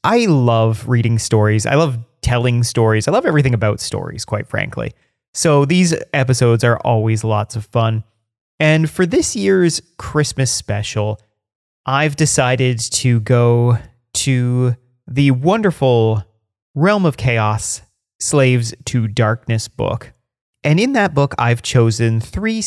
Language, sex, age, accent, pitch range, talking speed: English, male, 30-49, American, 110-140 Hz, 130 wpm